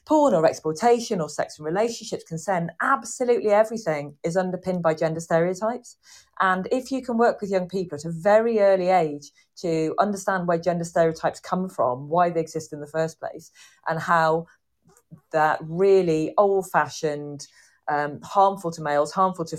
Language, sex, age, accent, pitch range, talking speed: English, female, 40-59, British, 145-190 Hz, 160 wpm